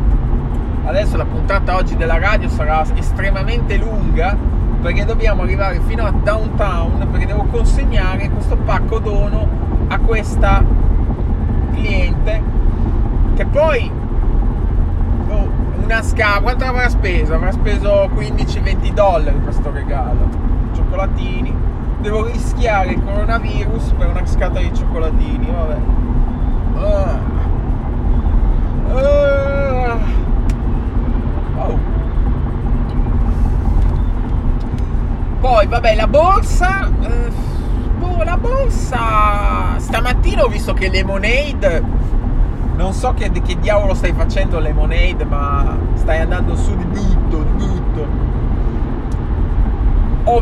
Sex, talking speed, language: male, 95 wpm, Italian